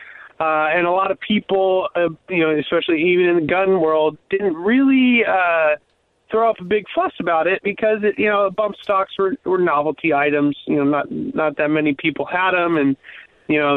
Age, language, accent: 20-39, English, American